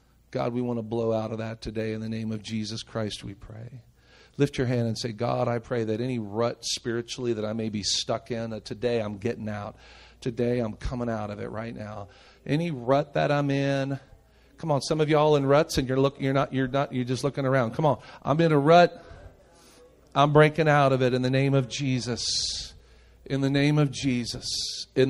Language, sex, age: English, male, 40-59